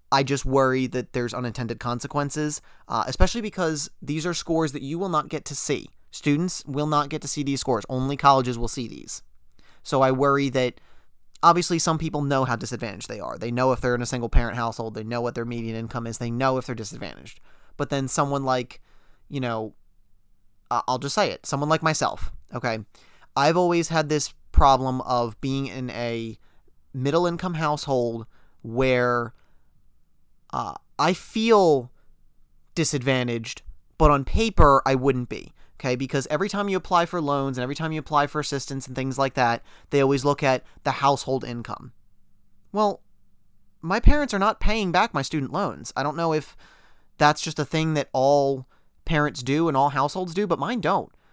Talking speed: 180 wpm